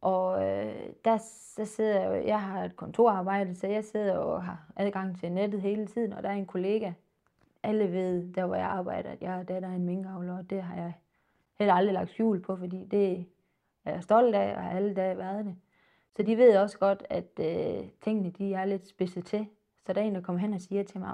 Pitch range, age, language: 180-200 Hz, 20-39, Danish